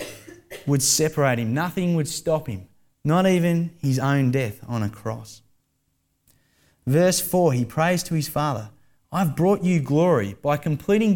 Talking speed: 150 wpm